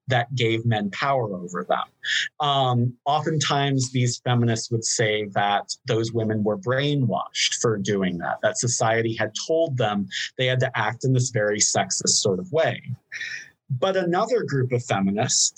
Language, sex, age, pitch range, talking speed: English, male, 30-49, 115-140 Hz, 160 wpm